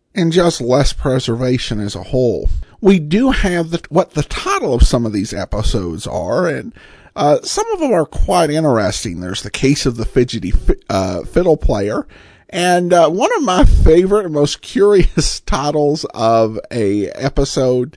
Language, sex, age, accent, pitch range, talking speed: English, male, 50-69, American, 120-180 Hz, 170 wpm